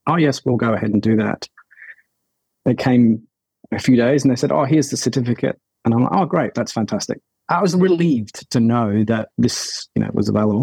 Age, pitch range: 30-49, 115-135 Hz